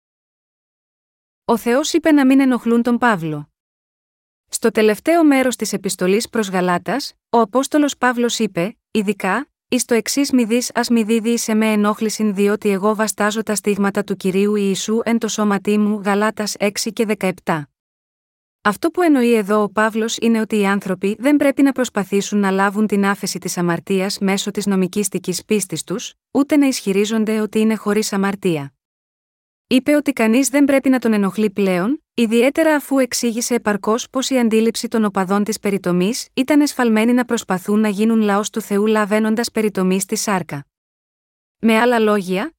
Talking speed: 160 wpm